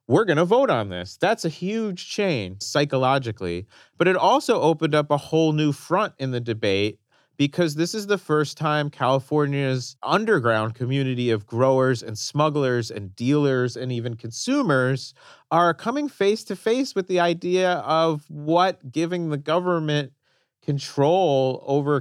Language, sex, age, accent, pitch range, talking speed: English, male, 30-49, American, 125-155 Hz, 155 wpm